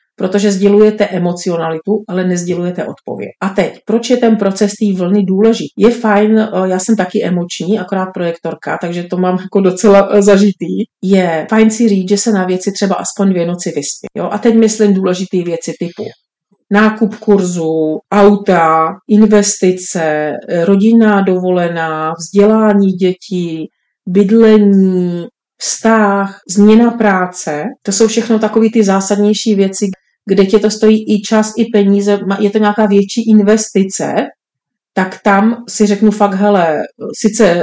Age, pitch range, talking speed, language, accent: 40-59, 185-215 Hz, 140 wpm, Czech, native